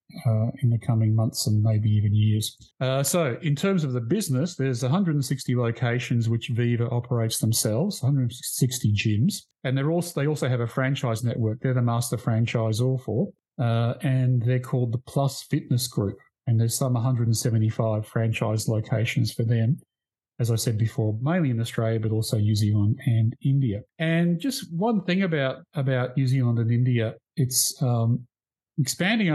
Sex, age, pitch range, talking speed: male, 40-59, 115-135 Hz, 170 wpm